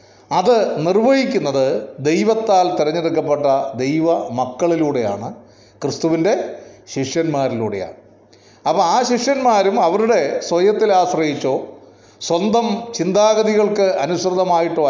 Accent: native